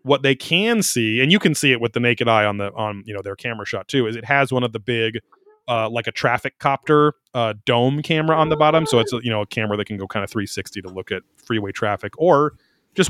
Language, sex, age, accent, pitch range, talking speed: English, male, 30-49, American, 110-135 Hz, 270 wpm